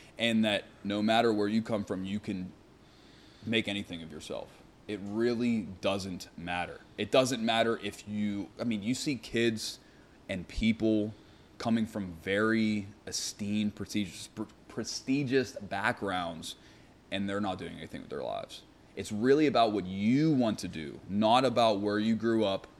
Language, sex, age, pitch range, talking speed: English, male, 20-39, 95-110 Hz, 155 wpm